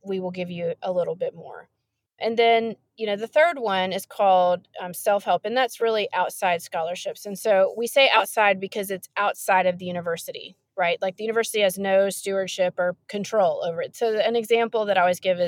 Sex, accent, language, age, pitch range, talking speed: female, American, English, 30-49, 185-230 Hz, 205 wpm